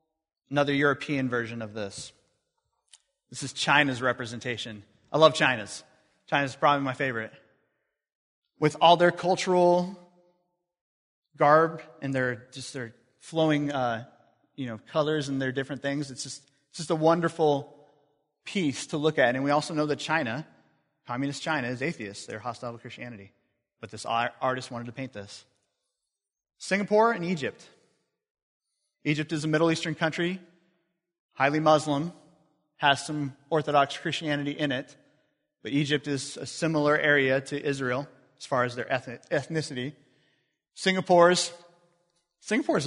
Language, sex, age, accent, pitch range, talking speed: English, male, 30-49, American, 130-165 Hz, 135 wpm